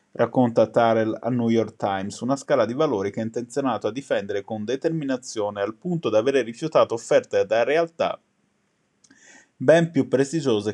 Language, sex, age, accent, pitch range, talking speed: Italian, male, 20-39, native, 110-140 Hz, 155 wpm